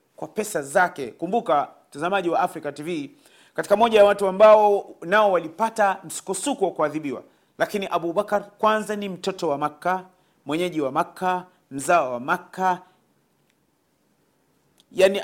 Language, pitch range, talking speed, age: Swahili, 170-210 Hz, 125 wpm, 40-59